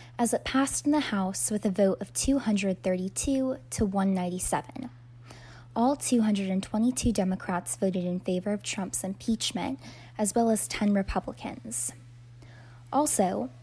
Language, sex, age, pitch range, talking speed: English, female, 10-29, 175-220 Hz, 125 wpm